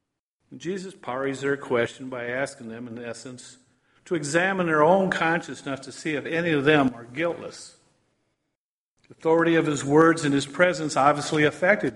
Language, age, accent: English, 50-69, American